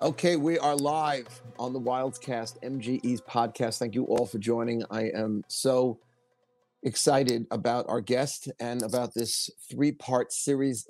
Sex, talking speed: male, 145 wpm